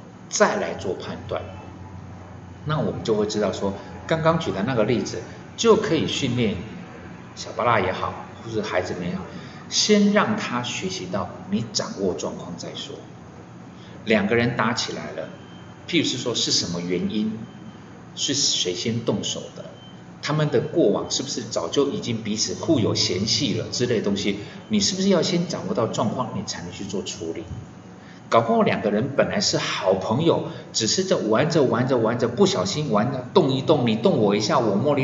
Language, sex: Chinese, male